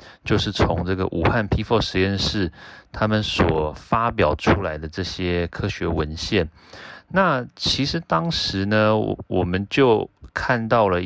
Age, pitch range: 30-49, 85-110 Hz